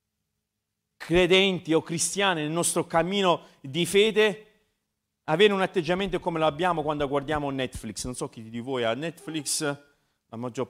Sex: male